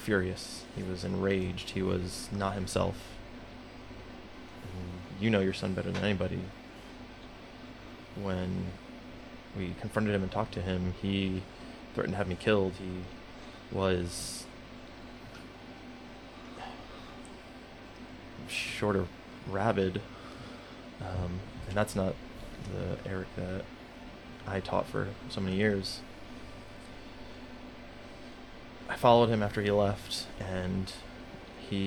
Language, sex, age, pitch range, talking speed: English, male, 20-39, 90-105 Hz, 105 wpm